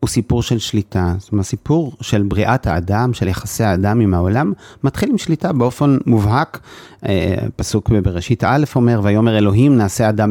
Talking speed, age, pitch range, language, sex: 170 wpm, 30-49, 105-135 Hz, Hebrew, male